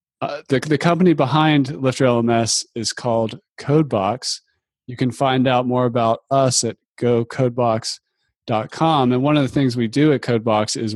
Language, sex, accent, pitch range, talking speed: English, male, American, 110-125 Hz, 160 wpm